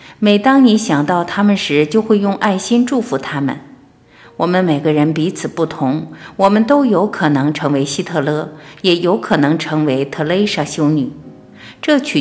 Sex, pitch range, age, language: female, 150-205 Hz, 50-69, Chinese